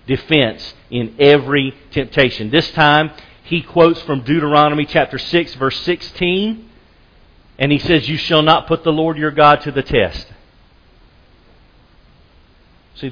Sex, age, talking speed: male, 40-59, 135 wpm